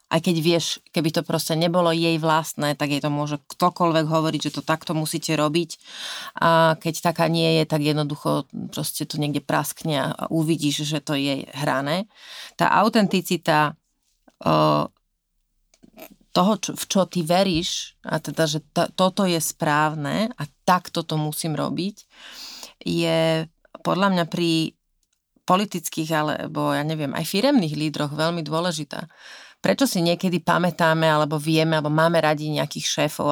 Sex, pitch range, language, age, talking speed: female, 155-175 Hz, Slovak, 30-49, 140 wpm